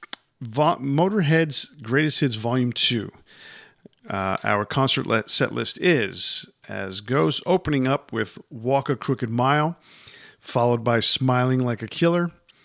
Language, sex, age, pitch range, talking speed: English, male, 50-69, 115-140 Hz, 125 wpm